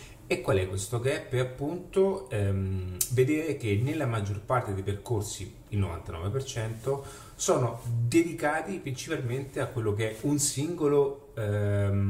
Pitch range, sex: 100-125 Hz, male